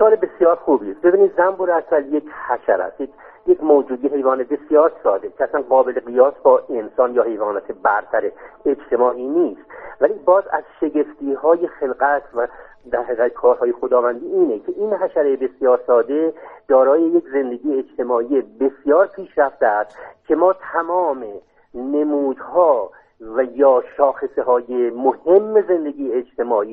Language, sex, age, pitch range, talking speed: Persian, male, 50-69, 140-210 Hz, 135 wpm